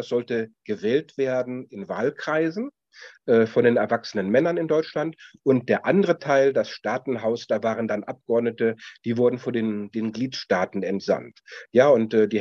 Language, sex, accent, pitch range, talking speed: German, male, German, 115-135 Hz, 155 wpm